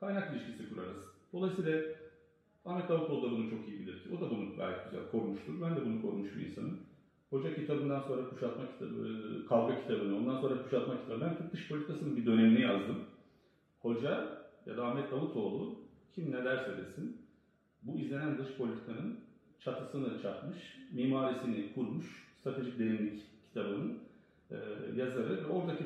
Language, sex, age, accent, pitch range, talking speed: Turkish, male, 40-59, native, 110-140 Hz, 145 wpm